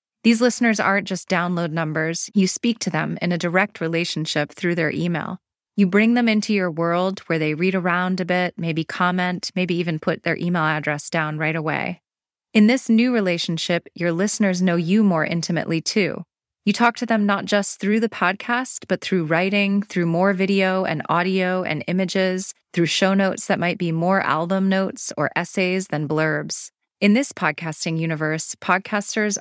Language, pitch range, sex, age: English, 165-195 Hz, female, 20-39